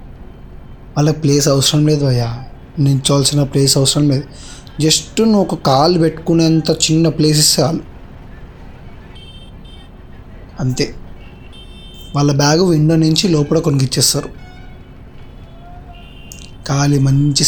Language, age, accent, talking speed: Telugu, 20-39, native, 85 wpm